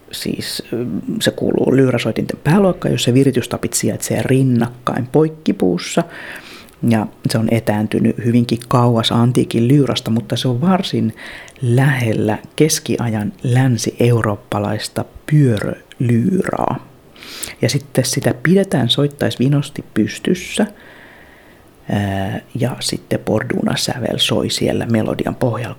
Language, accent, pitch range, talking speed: Finnish, native, 115-135 Hz, 95 wpm